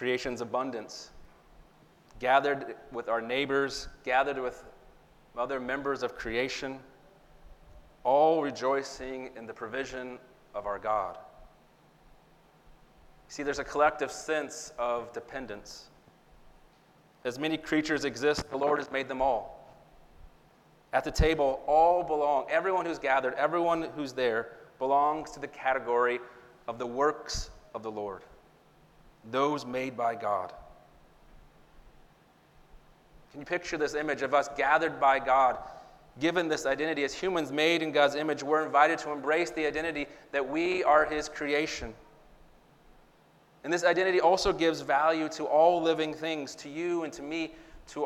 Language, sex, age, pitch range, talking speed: English, male, 30-49, 130-155 Hz, 135 wpm